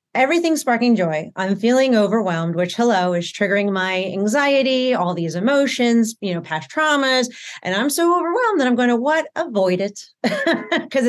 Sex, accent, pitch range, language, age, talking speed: female, American, 180-250 Hz, English, 30-49, 170 wpm